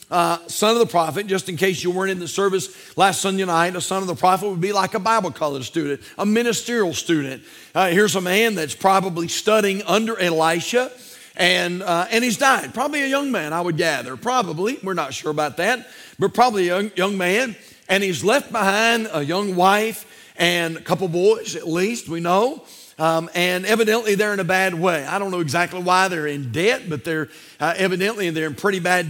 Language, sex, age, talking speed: English, male, 40-59, 210 wpm